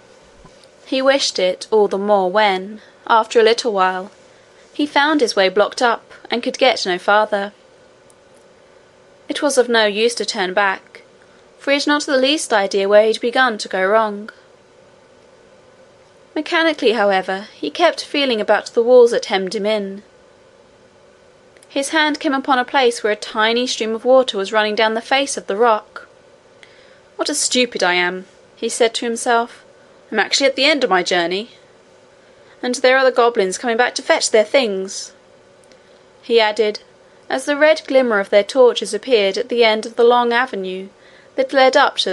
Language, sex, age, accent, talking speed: English, female, 20-39, British, 180 wpm